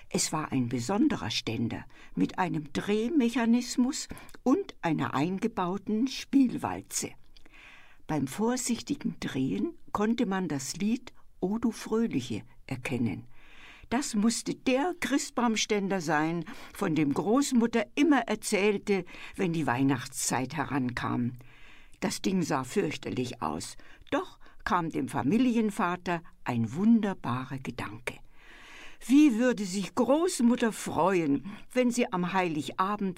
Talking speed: 105 wpm